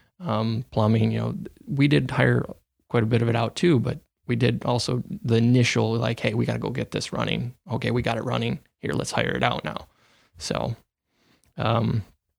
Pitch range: 110-125 Hz